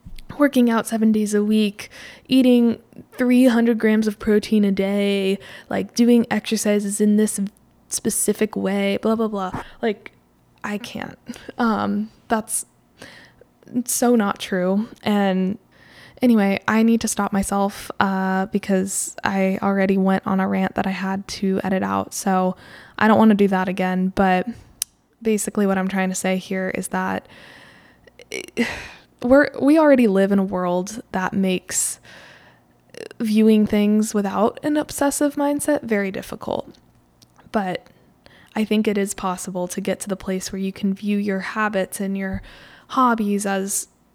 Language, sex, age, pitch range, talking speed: English, female, 10-29, 195-225 Hz, 145 wpm